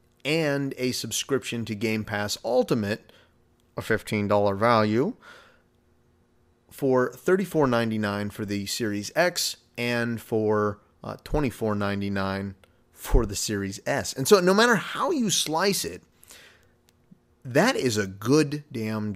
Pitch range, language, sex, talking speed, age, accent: 105-140 Hz, English, male, 115 wpm, 30-49, American